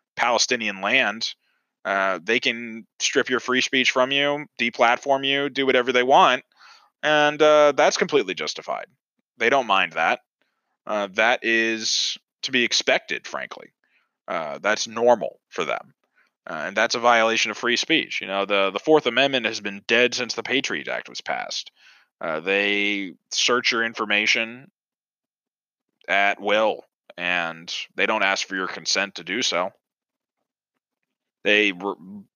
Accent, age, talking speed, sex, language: American, 20-39, 145 wpm, male, English